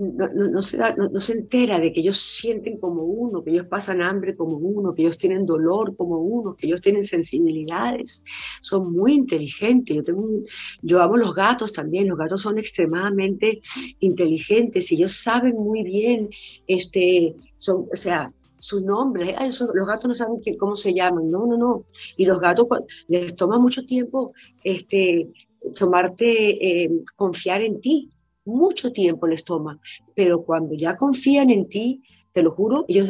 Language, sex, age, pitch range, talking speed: Spanish, female, 50-69, 170-220 Hz, 175 wpm